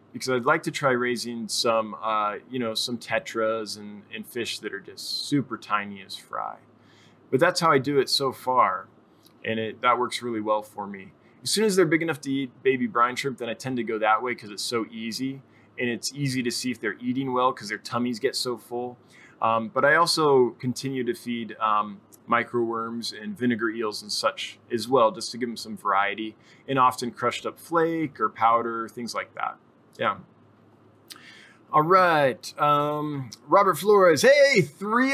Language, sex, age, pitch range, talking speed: English, male, 20-39, 115-170 Hz, 195 wpm